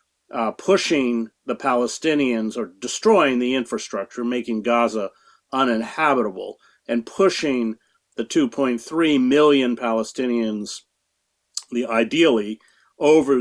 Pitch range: 110-130 Hz